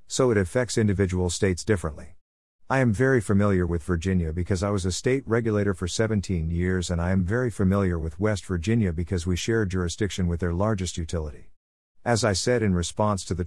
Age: 50-69